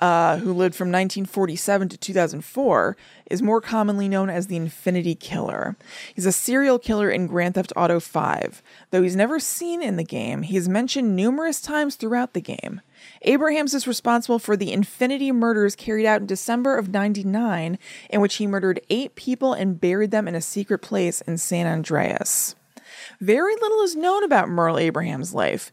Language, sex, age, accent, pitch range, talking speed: English, female, 20-39, American, 175-225 Hz, 180 wpm